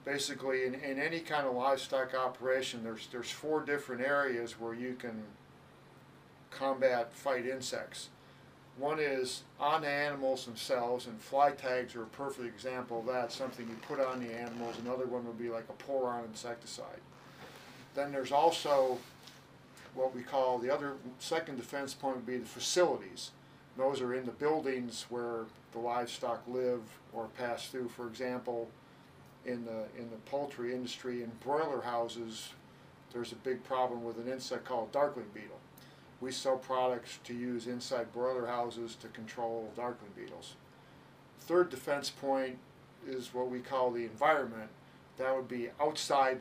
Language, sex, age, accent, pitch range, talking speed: English, male, 50-69, American, 120-135 Hz, 155 wpm